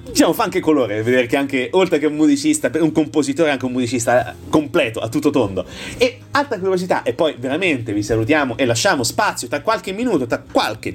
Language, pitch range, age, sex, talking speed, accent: Italian, 125-170 Hz, 30-49, male, 195 wpm, native